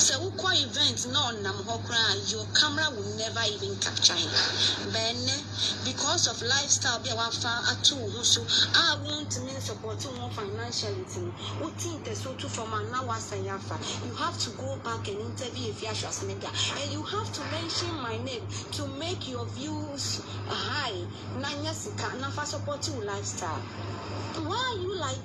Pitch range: 100-110 Hz